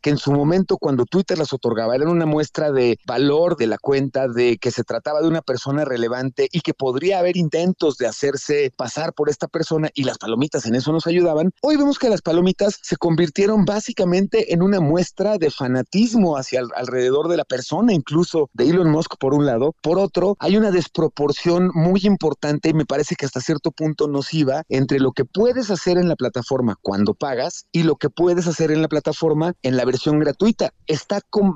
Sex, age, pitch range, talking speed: male, 40-59, 140-185 Hz, 205 wpm